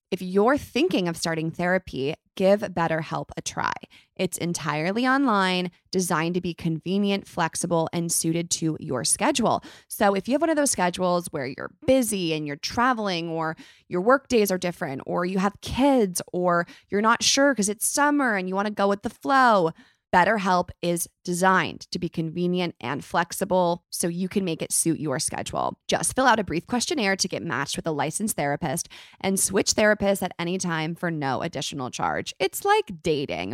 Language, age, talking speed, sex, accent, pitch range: English, 20-39, 185 wpm, female, American, 165-200 Hz